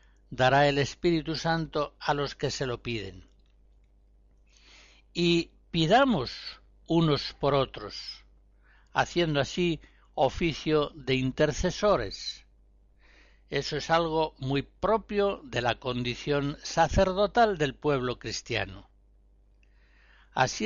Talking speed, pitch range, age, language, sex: 95 wpm, 135-180 Hz, 60-79, Spanish, male